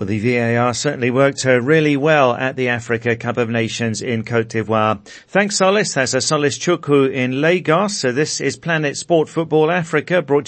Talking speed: 190 wpm